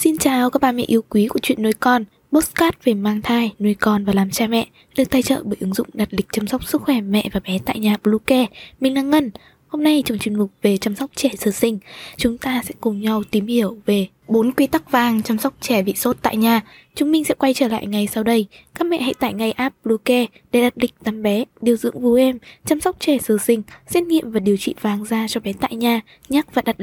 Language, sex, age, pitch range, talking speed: Vietnamese, female, 10-29, 215-265 Hz, 265 wpm